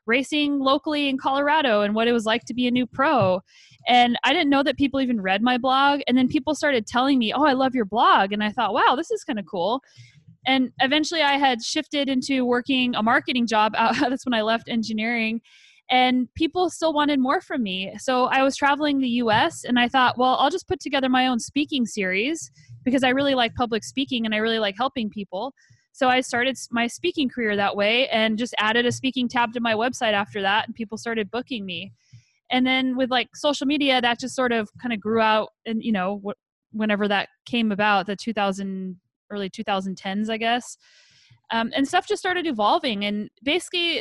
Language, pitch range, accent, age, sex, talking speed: English, 215-270 Hz, American, 10-29, female, 210 wpm